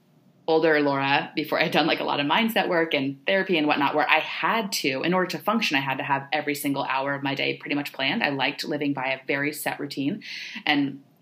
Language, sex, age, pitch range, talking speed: English, female, 20-39, 140-175 Hz, 245 wpm